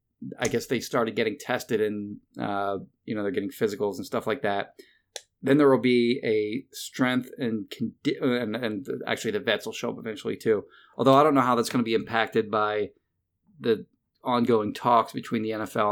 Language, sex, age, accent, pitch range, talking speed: English, male, 30-49, American, 105-125 Hz, 200 wpm